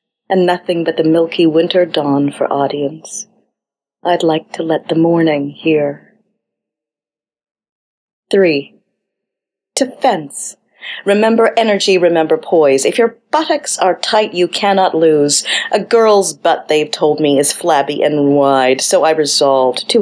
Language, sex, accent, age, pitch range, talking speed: English, female, American, 40-59, 145-195 Hz, 135 wpm